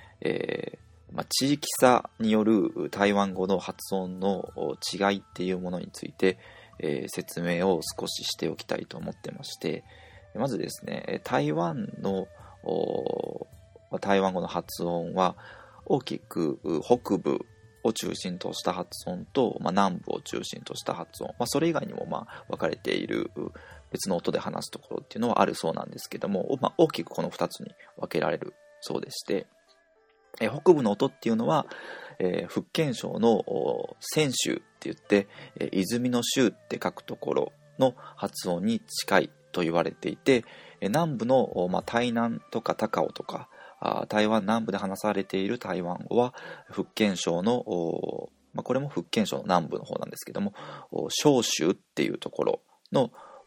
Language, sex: Japanese, male